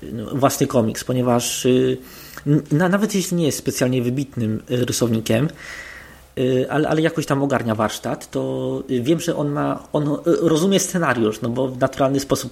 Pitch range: 125-145 Hz